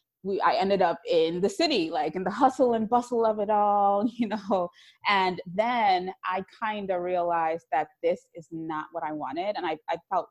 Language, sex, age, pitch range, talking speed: English, female, 20-39, 170-220 Hz, 200 wpm